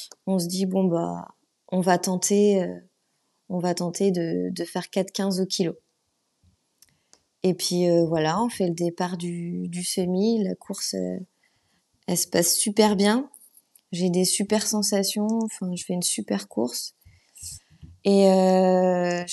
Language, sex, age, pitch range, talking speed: French, female, 20-39, 170-200 Hz, 155 wpm